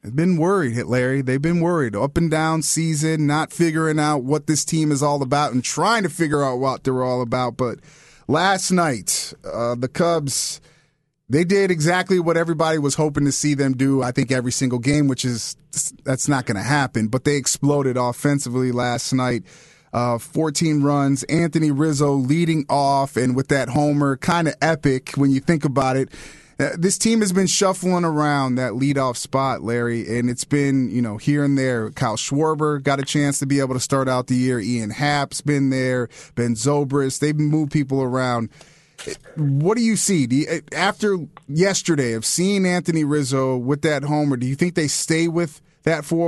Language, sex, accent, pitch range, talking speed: English, male, American, 130-160 Hz, 190 wpm